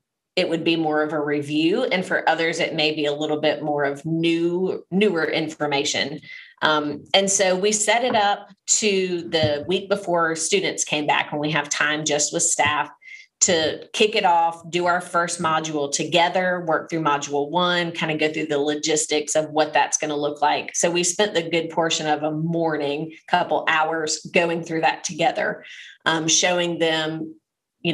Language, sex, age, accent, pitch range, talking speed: English, female, 30-49, American, 155-195 Hz, 185 wpm